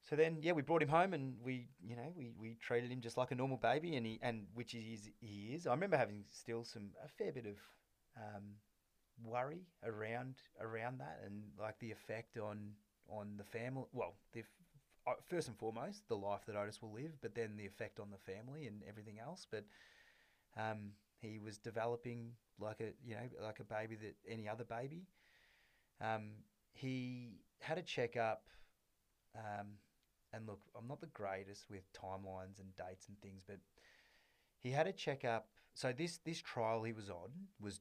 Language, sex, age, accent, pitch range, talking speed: English, male, 20-39, Australian, 100-125 Hz, 185 wpm